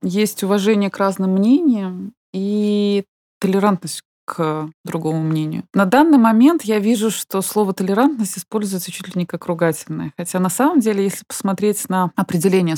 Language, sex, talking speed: Russian, female, 150 wpm